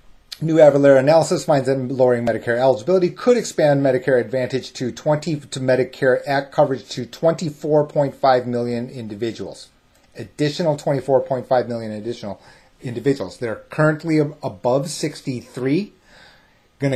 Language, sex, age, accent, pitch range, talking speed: English, male, 30-49, American, 115-145 Hz, 115 wpm